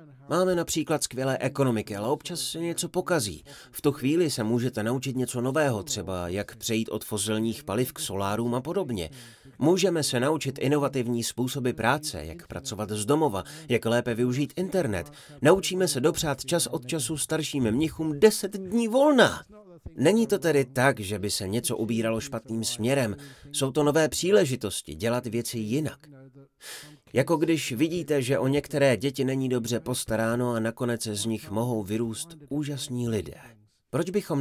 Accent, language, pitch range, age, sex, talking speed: native, Czech, 115-150 Hz, 30-49, male, 160 wpm